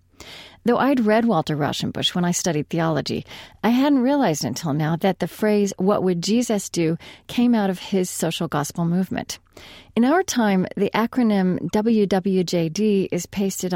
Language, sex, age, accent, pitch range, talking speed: English, female, 40-59, American, 170-220 Hz, 155 wpm